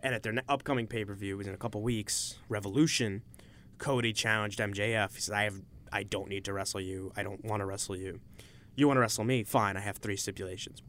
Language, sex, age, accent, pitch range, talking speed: English, male, 20-39, American, 105-135 Hz, 215 wpm